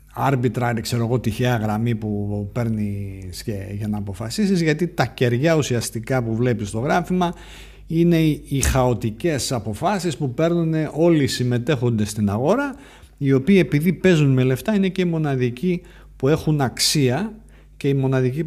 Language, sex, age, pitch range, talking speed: Greek, male, 50-69, 110-165 Hz, 145 wpm